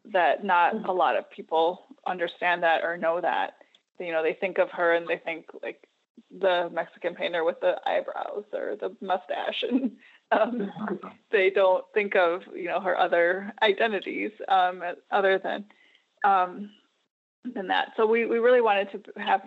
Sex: female